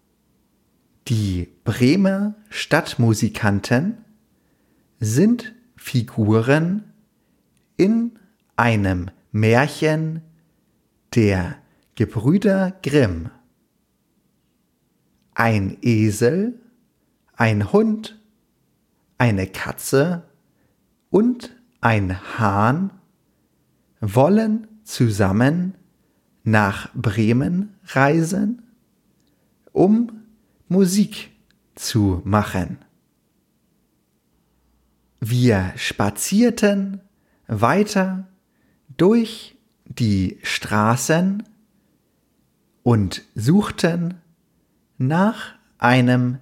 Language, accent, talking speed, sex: English, German, 50 wpm, male